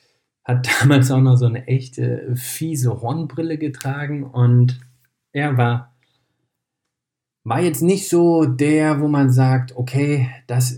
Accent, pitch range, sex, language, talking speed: German, 115-135 Hz, male, German, 130 wpm